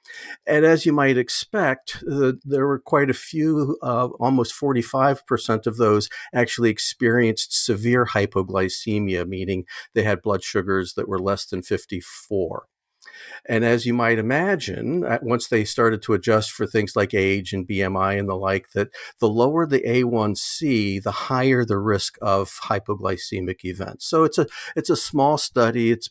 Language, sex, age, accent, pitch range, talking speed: English, male, 50-69, American, 95-120 Hz, 160 wpm